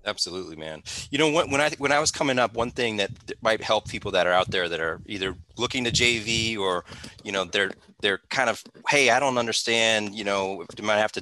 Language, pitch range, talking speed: English, 105-130 Hz, 235 wpm